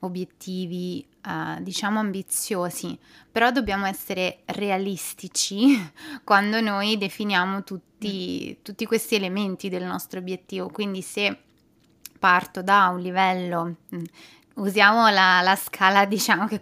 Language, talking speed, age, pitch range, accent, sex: Italian, 110 wpm, 20-39, 185-210 Hz, native, female